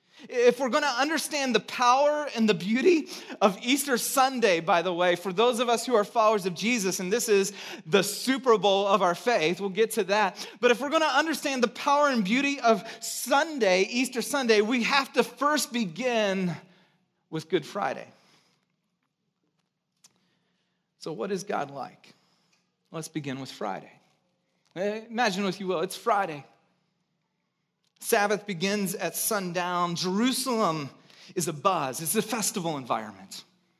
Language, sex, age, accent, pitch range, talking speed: English, male, 30-49, American, 185-240 Hz, 155 wpm